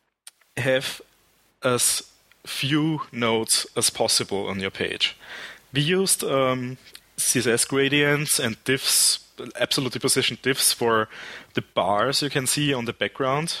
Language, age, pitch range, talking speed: English, 30-49, 115-145 Hz, 125 wpm